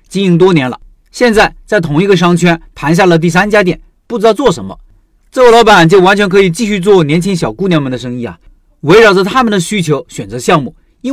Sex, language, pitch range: male, Chinese, 145-205 Hz